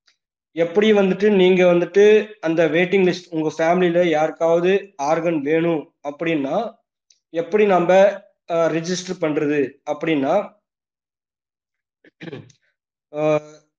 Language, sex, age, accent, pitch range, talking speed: Tamil, male, 20-39, native, 160-185 Hz, 80 wpm